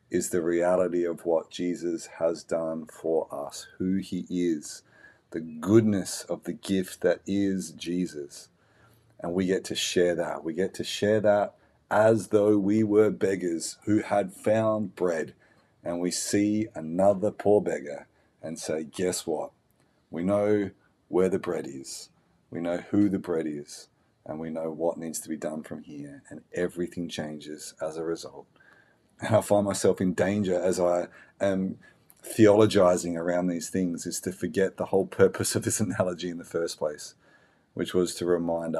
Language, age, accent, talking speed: English, 40-59, Australian, 170 wpm